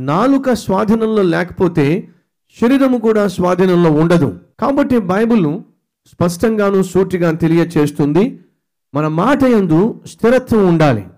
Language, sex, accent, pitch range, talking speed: Telugu, male, native, 145-205 Hz, 90 wpm